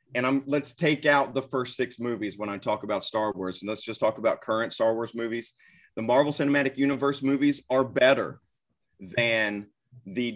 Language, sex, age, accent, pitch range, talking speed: English, male, 30-49, American, 120-140 Hz, 190 wpm